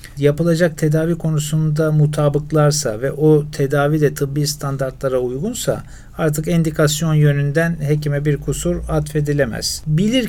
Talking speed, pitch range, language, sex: 110 wpm, 145-175 Hz, Turkish, male